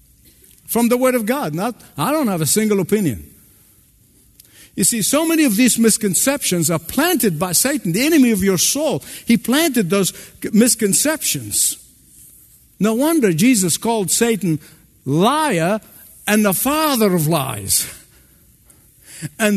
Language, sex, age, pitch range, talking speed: English, male, 60-79, 150-230 Hz, 135 wpm